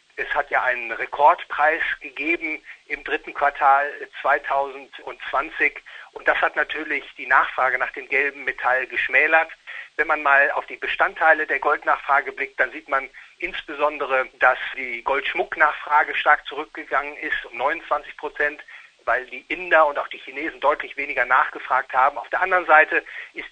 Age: 40-59